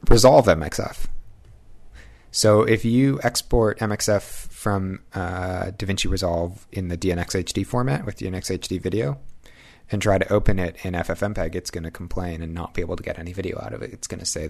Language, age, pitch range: English, 30-49, 85-105 Hz